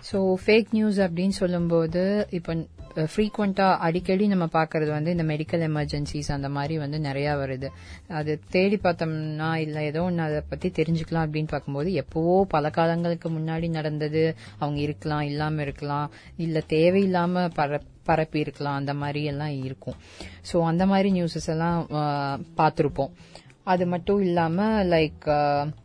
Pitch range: 145-180 Hz